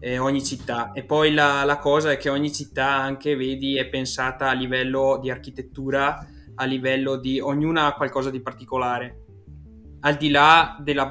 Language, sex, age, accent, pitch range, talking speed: Italian, male, 20-39, native, 125-135 Hz, 165 wpm